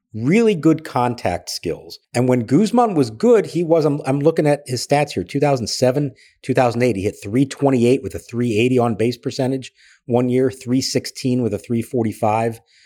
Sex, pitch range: male, 105-135 Hz